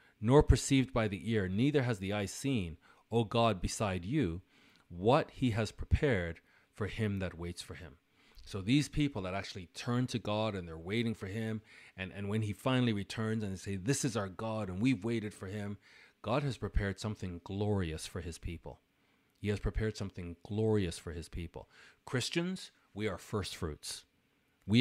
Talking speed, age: 185 wpm, 40-59